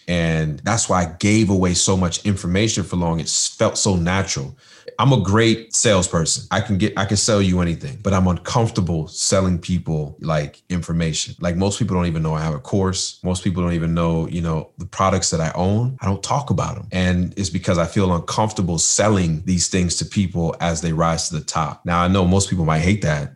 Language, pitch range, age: English, 85-95 Hz, 30-49